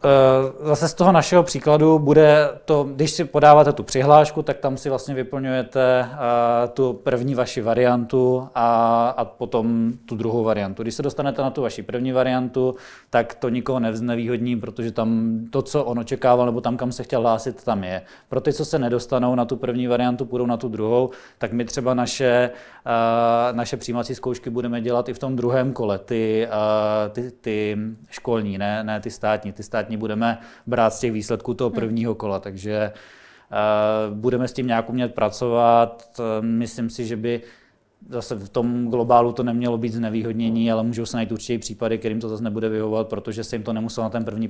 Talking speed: 190 wpm